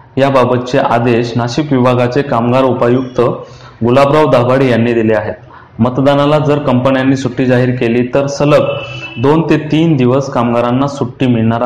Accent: native